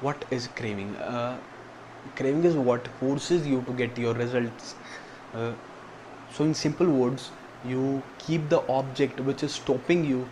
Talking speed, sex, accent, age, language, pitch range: 150 wpm, male, Indian, 20-39, English, 125-140 Hz